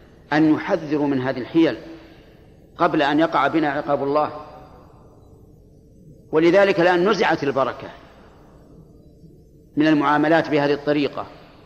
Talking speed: 100 wpm